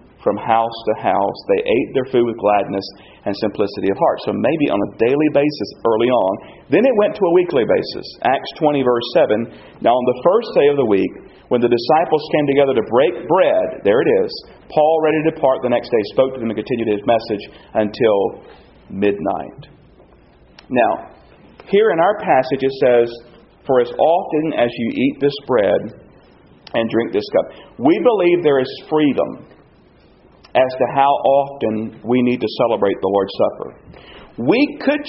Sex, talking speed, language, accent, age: male, 180 wpm, English, American, 40-59